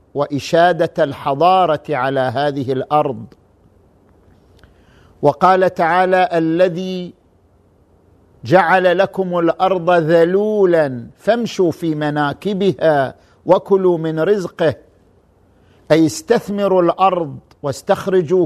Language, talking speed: Arabic, 70 wpm